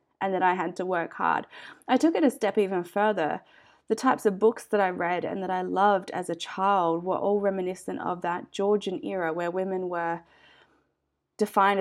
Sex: female